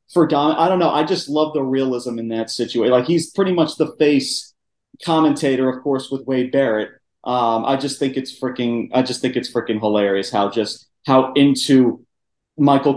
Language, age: English, 30-49